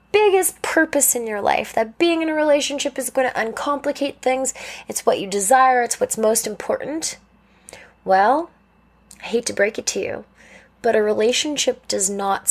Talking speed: 175 wpm